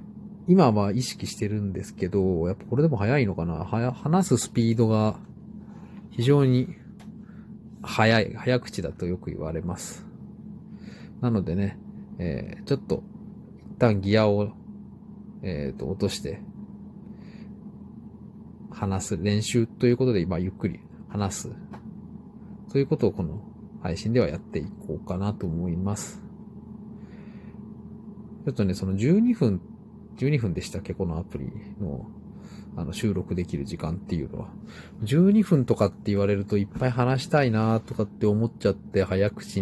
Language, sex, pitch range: Japanese, male, 95-160 Hz